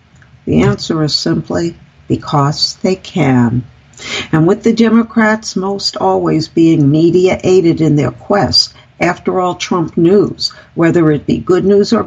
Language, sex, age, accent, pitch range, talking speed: English, female, 60-79, American, 155-210 Hz, 140 wpm